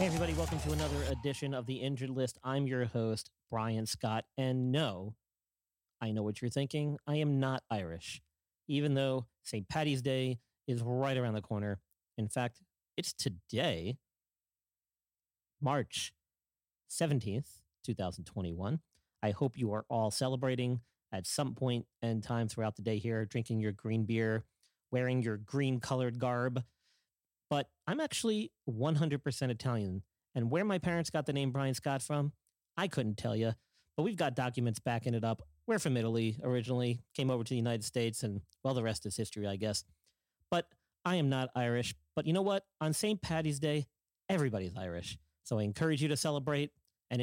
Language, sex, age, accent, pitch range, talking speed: English, male, 40-59, American, 110-135 Hz, 170 wpm